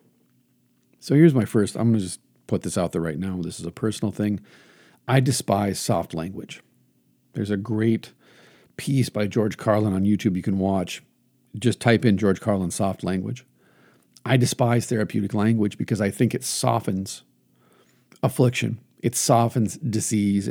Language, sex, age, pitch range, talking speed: English, male, 50-69, 105-130 Hz, 160 wpm